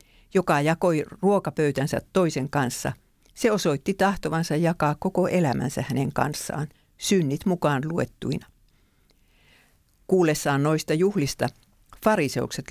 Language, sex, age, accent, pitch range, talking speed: English, female, 50-69, Finnish, 135-175 Hz, 95 wpm